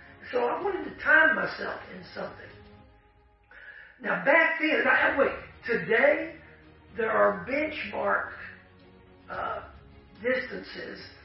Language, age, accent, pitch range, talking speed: English, 50-69, American, 180-275 Hz, 100 wpm